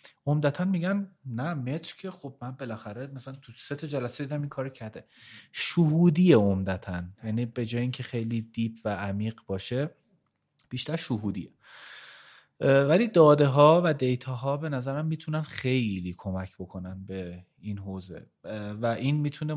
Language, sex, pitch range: Persian, male, 100-140 Hz